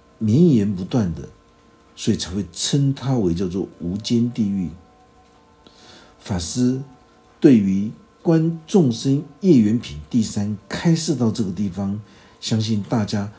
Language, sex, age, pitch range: Chinese, male, 50-69, 95-140 Hz